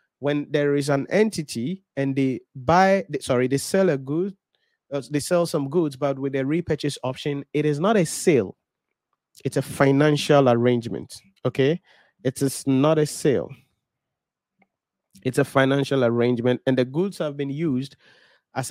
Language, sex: English, male